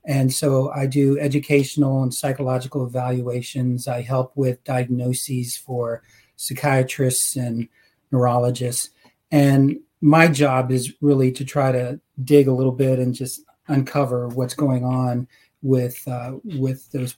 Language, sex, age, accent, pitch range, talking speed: English, male, 40-59, American, 130-145 Hz, 135 wpm